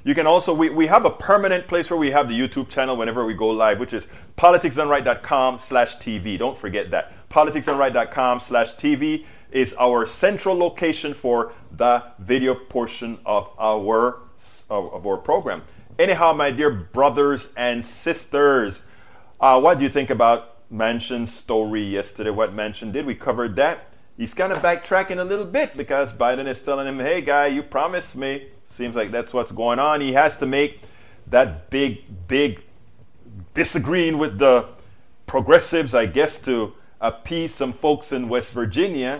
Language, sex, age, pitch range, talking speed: English, male, 30-49, 120-170 Hz, 165 wpm